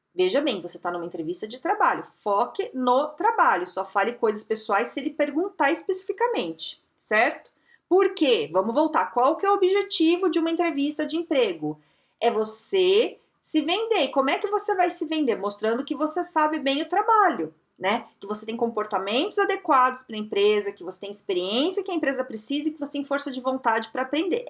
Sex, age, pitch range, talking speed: female, 40-59, 220-355 Hz, 190 wpm